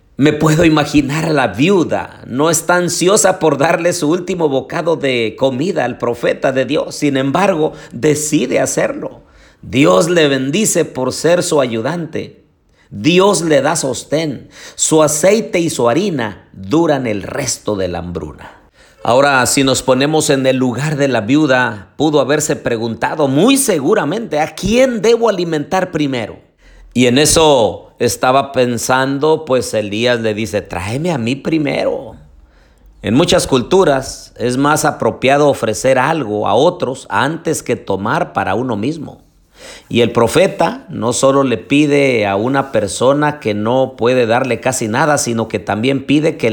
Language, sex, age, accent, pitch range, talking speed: Spanish, male, 50-69, Mexican, 115-155 Hz, 150 wpm